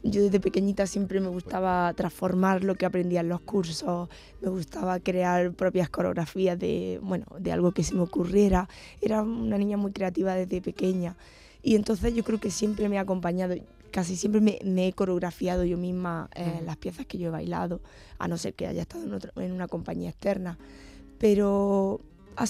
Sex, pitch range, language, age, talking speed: female, 180-200 Hz, Spanish, 20-39, 190 wpm